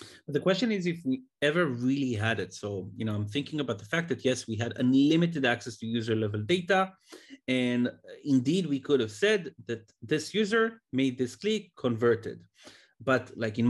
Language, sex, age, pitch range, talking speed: English, male, 30-49, 115-150 Hz, 195 wpm